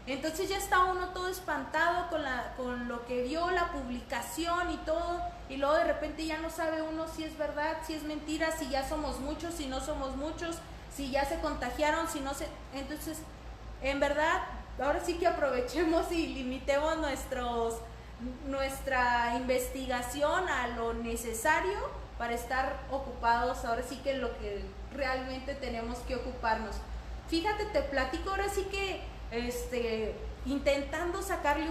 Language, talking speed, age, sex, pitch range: Spanish, 155 wpm, 30-49, female, 255-320 Hz